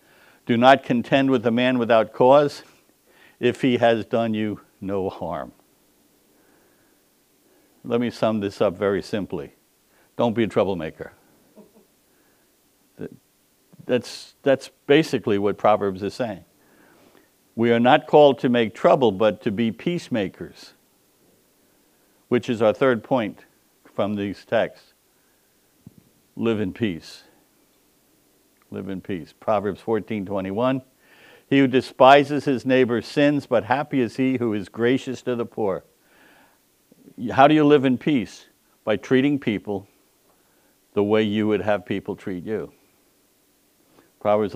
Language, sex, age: English, male, 60-79